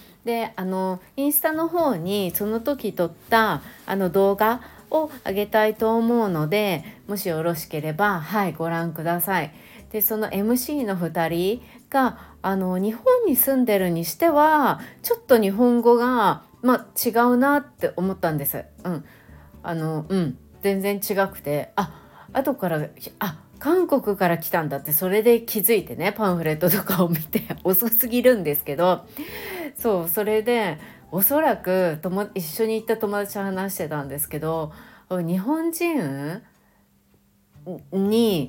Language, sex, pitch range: Japanese, female, 175-240 Hz